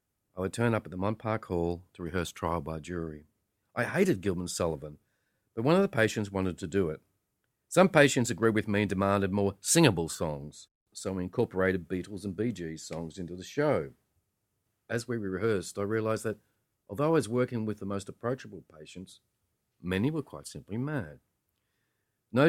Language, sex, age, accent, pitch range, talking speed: English, male, 40-59, Australian, 90-115 Hz, 185 wpm